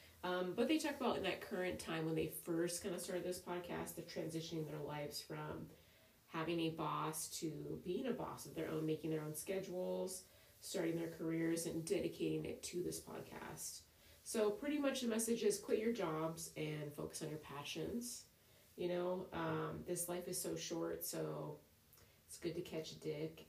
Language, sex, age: English, female, 30-49